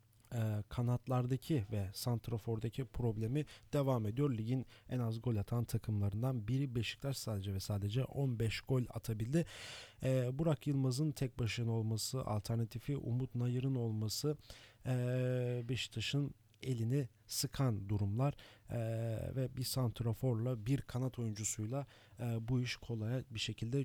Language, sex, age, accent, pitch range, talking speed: German, male, 40-59, Turkish, 110-130 Hz, 110 wpm